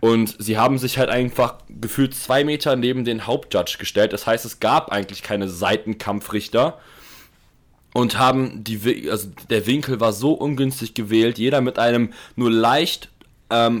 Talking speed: 155 wpm